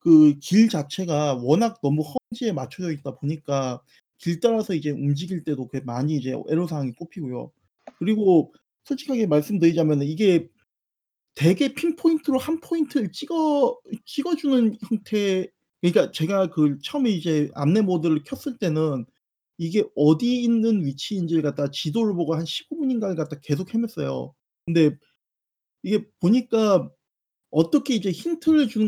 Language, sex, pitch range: Korean, male, 150-240 Hz